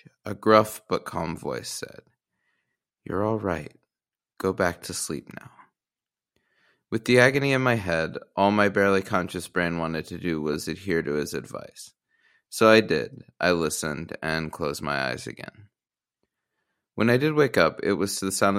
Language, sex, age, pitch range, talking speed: English, male, 30-49, 90-120 Hz, 170 wpm